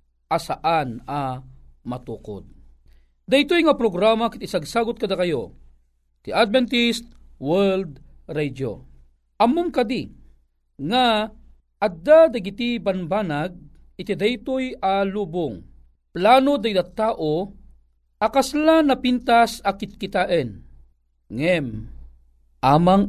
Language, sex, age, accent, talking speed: Filipino, male, 40-59, native, 85 wpm